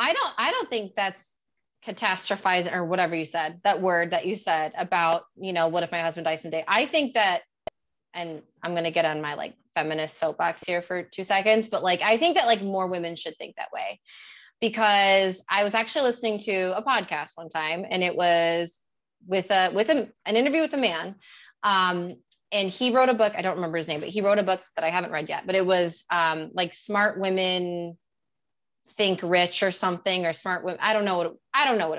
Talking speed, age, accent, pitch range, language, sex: 220 wpm, 20-39, American, 170-215 Hz, English, female